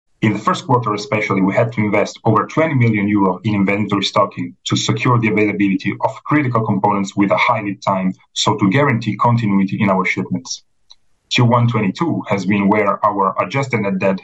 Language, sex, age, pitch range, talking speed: English, male, 30-49, 100-120 Hz, 180 wpm